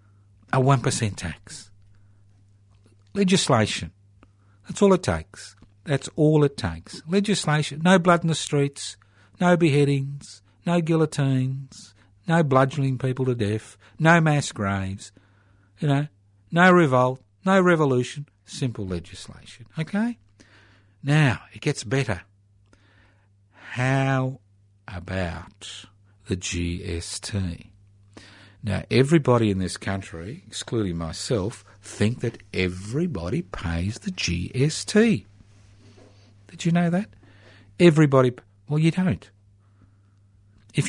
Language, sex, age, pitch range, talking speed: English, male, 60-79, 100-135 Hz, 100 wpm